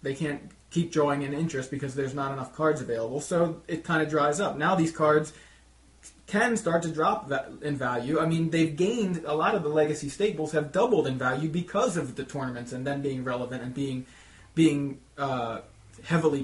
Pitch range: 125-155 Hz